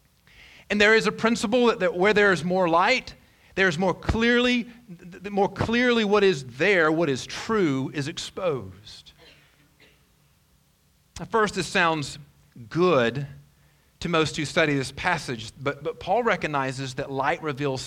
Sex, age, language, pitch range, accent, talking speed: male, 40-59, English, 125-190 Hz, American, 140 wpm